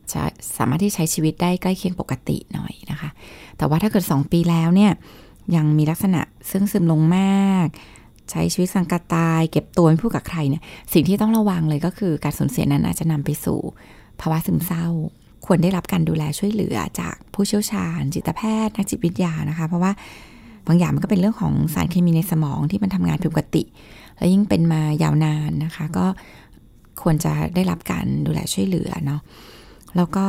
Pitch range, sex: 155-190 Hz, female